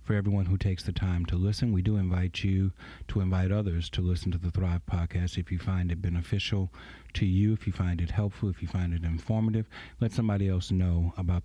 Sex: male